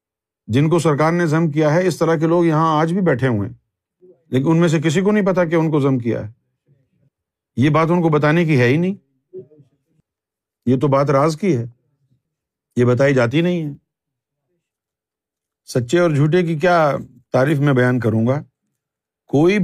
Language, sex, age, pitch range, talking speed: Urdu, male, 50-69, 130-170 Hz, 190 wpm